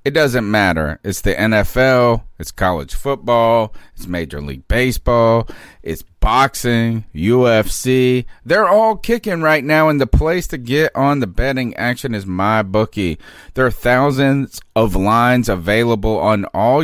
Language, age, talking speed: English, 40-59, 145 wpm